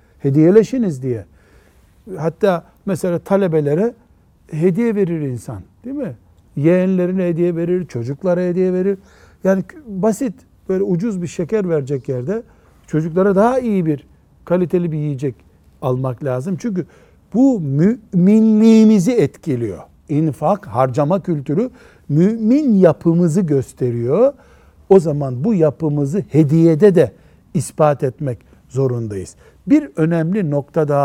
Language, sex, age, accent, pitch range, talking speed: Turkish, male, 60-79, native, 130-180 Hz, 105 wpm